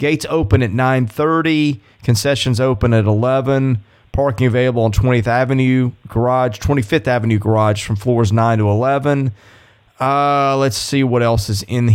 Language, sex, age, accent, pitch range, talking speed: English, male, 30-49, American, 105-135 Hz, 145 wpm